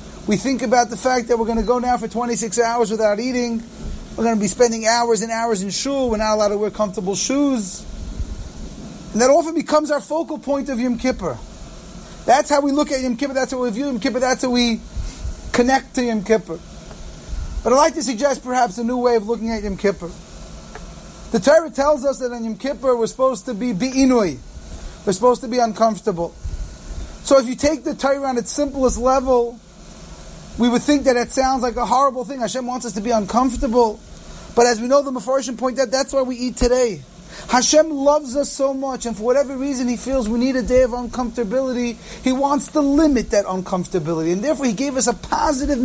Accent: American